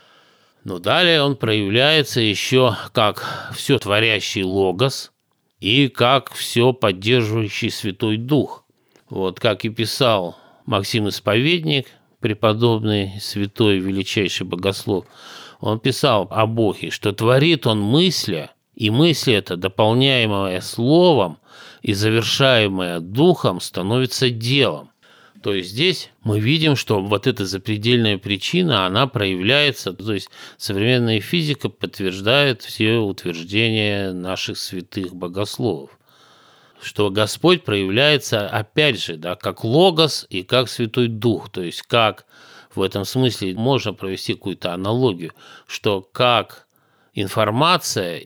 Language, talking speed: Russian, 110 wpm